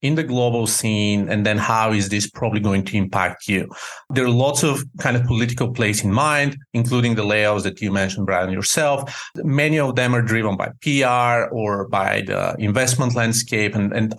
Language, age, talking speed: English, 40-59, 195 wpm